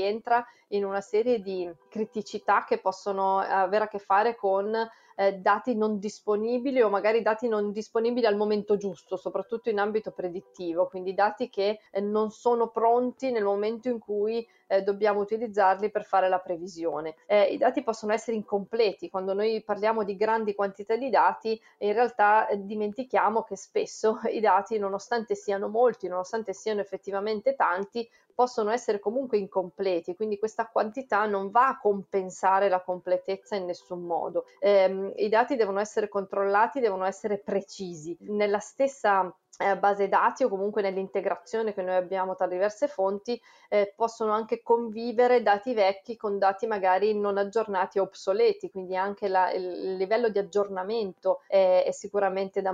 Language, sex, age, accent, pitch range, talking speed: Italian, female, 30-49, native, 195-225 Hz, 160 wpm